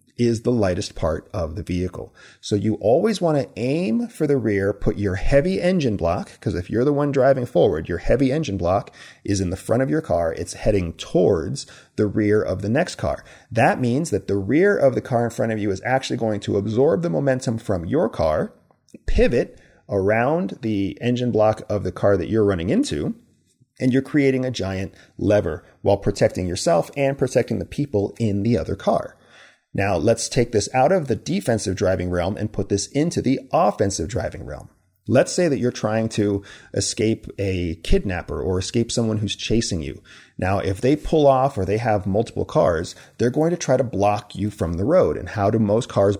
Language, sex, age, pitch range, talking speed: English, male, 40-59, 100-130 Hz, 205 wpm